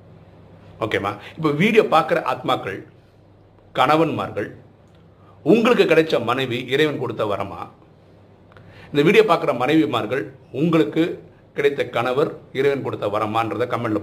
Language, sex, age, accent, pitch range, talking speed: Tamil, male, 50-69, native, 100-145 Hz, 100 wpm